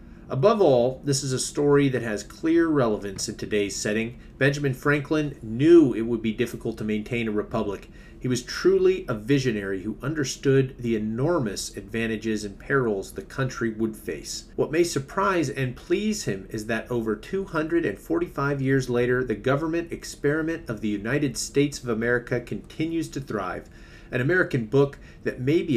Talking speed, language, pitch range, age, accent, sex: 165 wpm, English, 110-145 Hz, 40-59, American, male